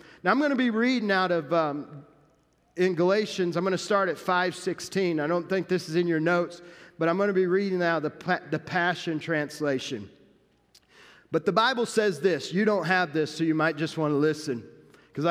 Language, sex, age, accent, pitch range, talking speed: English, male, 40-59, American, 145-190 Hz, 210 wpm